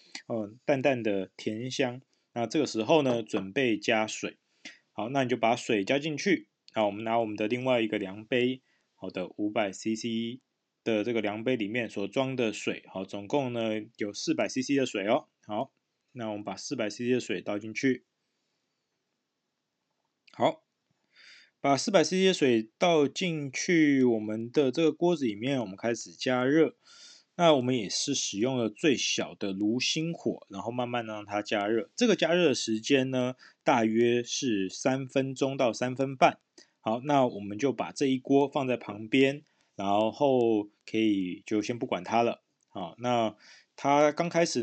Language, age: Chinese, 20-39